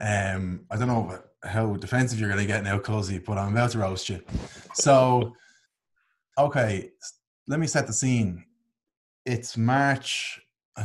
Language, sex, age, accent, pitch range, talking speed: English, male, 20-39, Irish, 105-130 Hz, 155 wpm